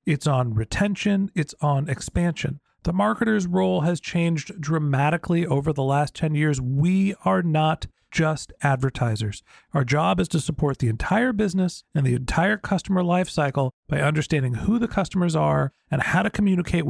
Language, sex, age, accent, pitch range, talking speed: English, male, 40-59, American, 145-200 Hz, 160 wpm